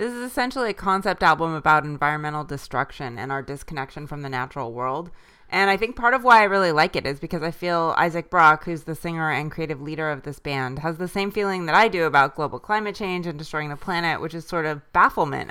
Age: 20-39